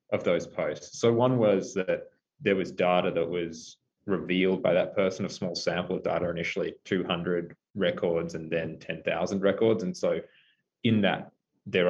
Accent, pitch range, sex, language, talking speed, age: Australian, 90-115 Hz, male, English, 165 wpm, 20-39